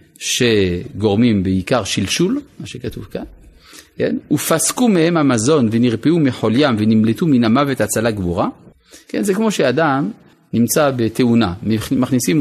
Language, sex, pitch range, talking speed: Hebrew, male, 115-165 Hz, 115 wpm